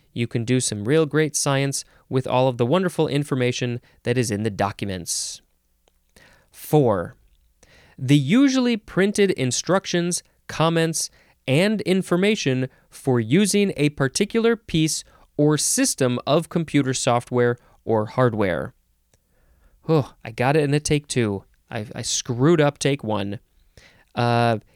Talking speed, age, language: 130 wpm, 20-39, English